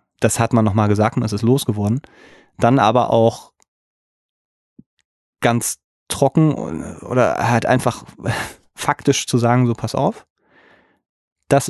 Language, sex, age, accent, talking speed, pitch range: German, male, 30-49, German, 125 wpm, 115-135 Hz